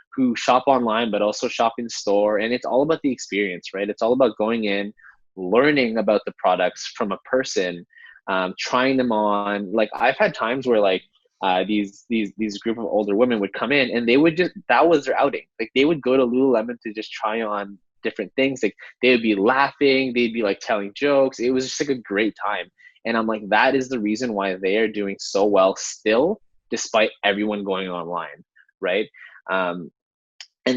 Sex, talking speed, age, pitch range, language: male, 205 wpm, 20-39, 95-125 Hz, English